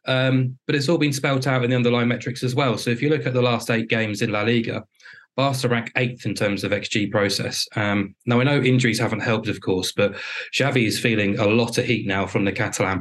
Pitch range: 100-120 Hz